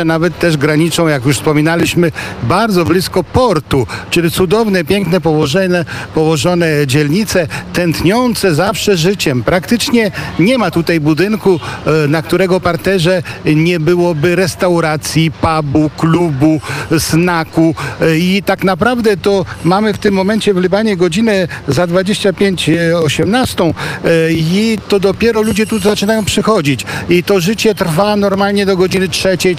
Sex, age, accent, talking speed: male, 50-69, native, 120 wpm